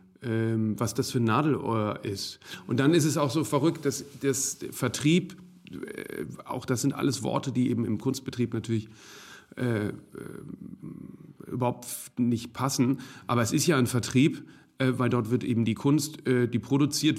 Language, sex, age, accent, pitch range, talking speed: German, male, 40-59, German, 120-140 Hz, 165 wpm